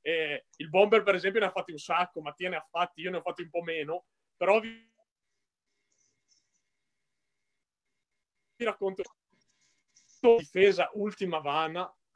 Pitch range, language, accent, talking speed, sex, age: 160-205 Hz, Italian, native, 140 wpm, male, 30-49